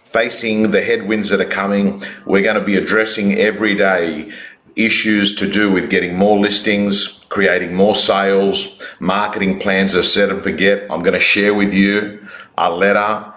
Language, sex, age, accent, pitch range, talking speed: English, male, 50-69, Australian, 95-105 Hz, 155 wpm